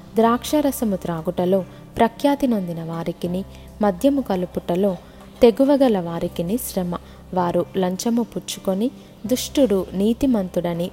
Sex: female